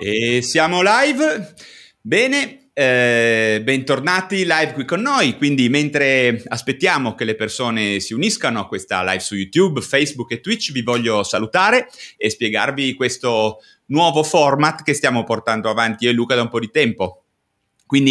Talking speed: 155 wpm